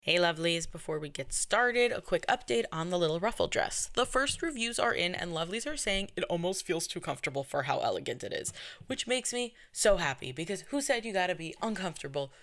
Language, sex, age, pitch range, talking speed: English, female, 10-29, 155-220 Hz, 215 wpm